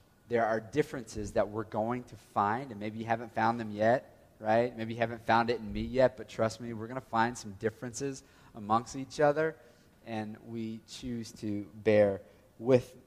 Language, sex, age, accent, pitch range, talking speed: English, male, 30-49, American, 115-145 Hz, 195 wpm